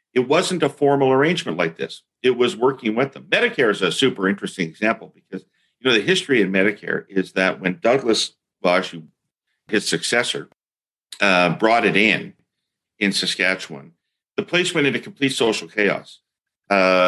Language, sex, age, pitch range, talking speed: English, male, 50-69, 95-130 Hz, 160 wpm